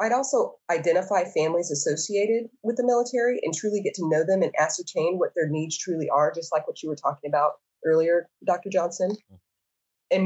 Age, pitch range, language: 20-39, 155-210 Hz, English